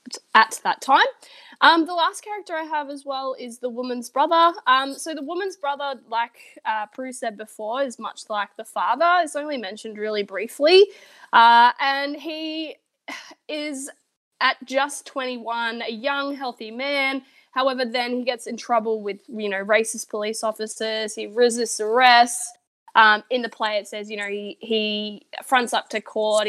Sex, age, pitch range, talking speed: female, 20-39, 215-280 Hz, 170 wpm